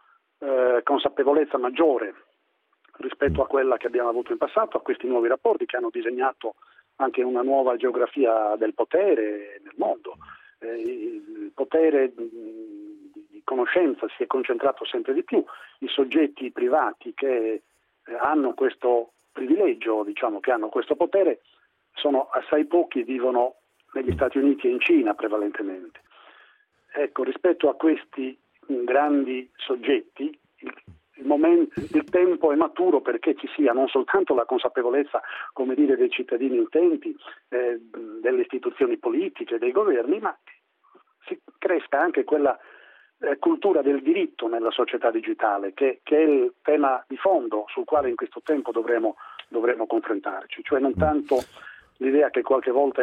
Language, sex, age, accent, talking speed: Italian, male, 40-59, native, 140 wpm